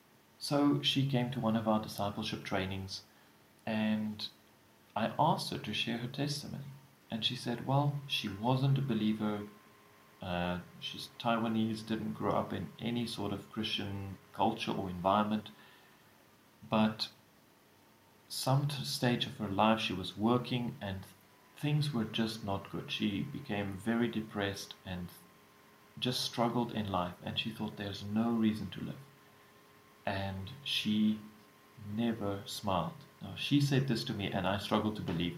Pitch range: 100-120 Hz